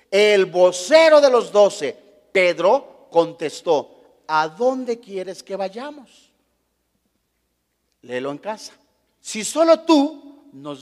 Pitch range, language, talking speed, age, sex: 190-285 Hz, Spanish, 105 wpm, 40-59, male